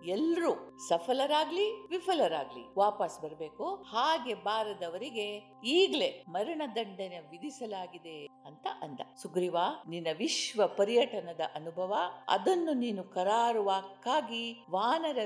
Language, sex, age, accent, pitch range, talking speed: Kannada, female, 50-69, native, 170-240 Hz, 85 wpm